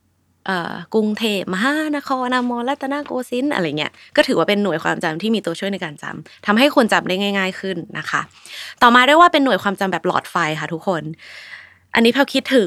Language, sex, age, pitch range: Thai, female, 20-39, 170-230 Hz